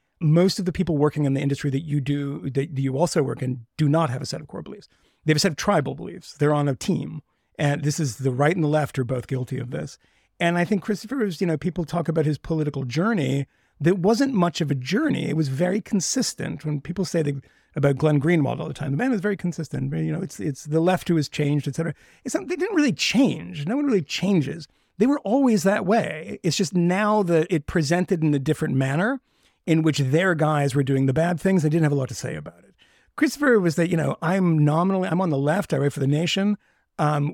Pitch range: 145-185 Hz